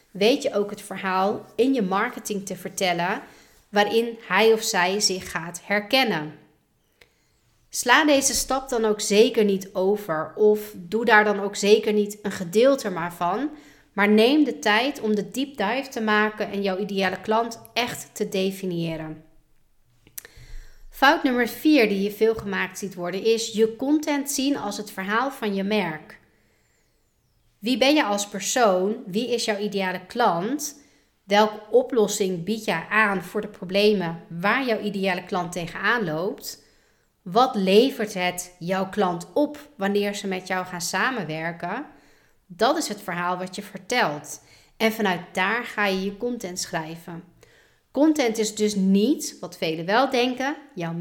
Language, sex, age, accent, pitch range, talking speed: Dutch, female, 30-49, Dutch, 185-225 Hz, 155 wpm